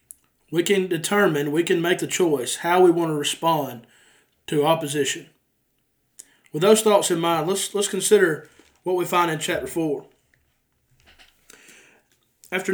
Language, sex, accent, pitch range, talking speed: English, male, American, 155-195 Hz, 140 wpm